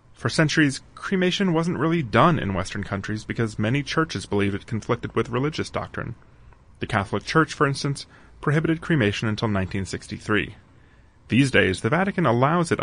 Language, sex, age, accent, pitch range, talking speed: English, male, 30-49, American, 100-140 Hz, 155 wpm